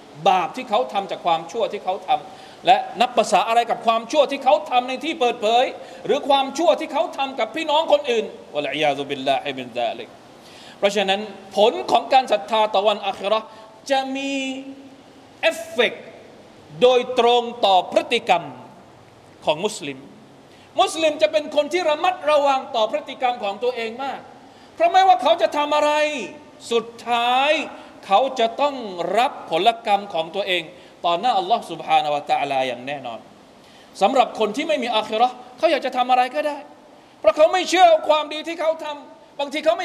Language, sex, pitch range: Thai, male, 215-305 Hz